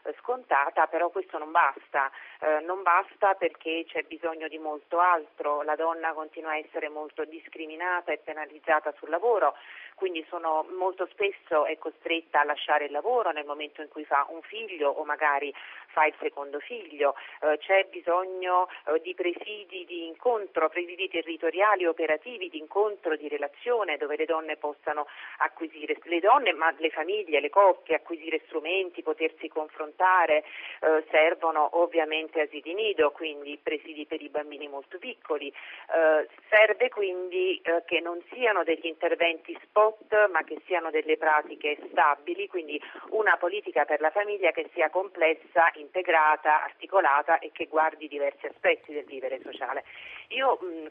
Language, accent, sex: Italian, native, female